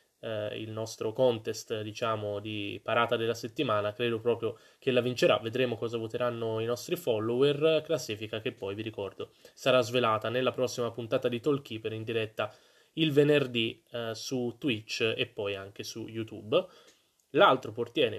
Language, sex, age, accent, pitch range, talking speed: Italian, male, 20-39, native, 110-125 Hz, 155 wpm